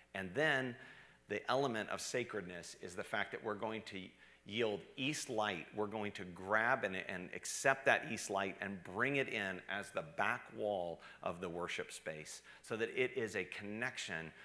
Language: English